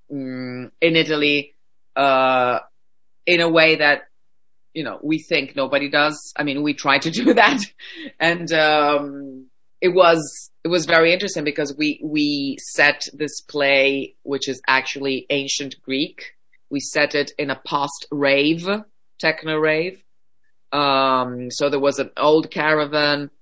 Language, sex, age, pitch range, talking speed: English, female, 30-49, 135-155 Hz, 140 wpm